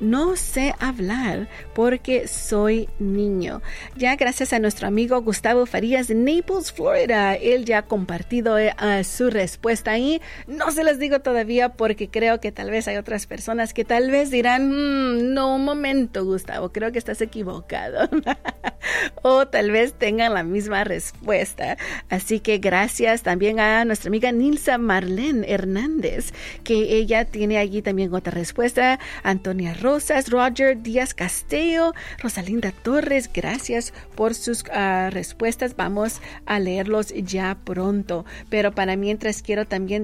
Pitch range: 205-255 Hz